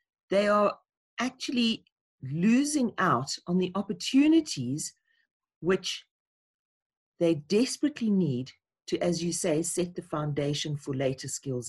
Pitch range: 150-200 Hz